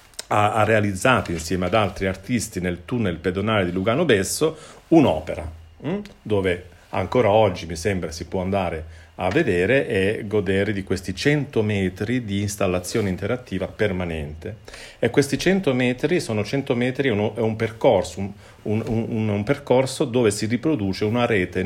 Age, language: 40-59, Italian